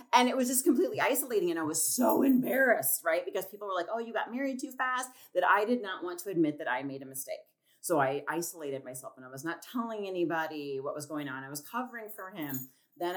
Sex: female